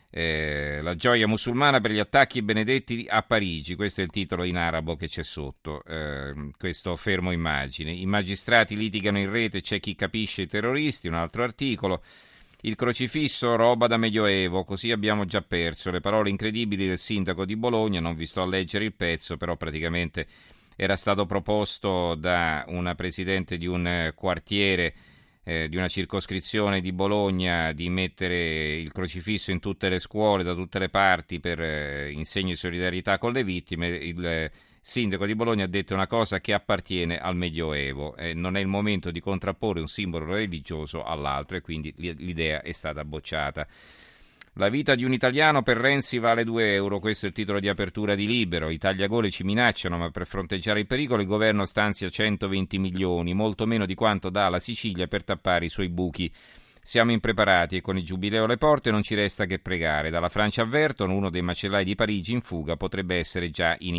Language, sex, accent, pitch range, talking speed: Italian, male, native, 85-105 Hz, 185 wpm